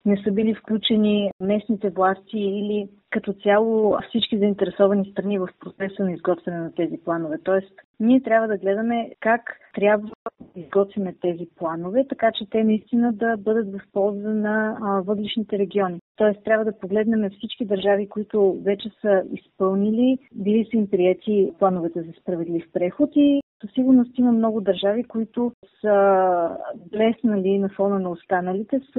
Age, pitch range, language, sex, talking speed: 30-49, 195-225 Hz, Bulgarian, female, 150 wpm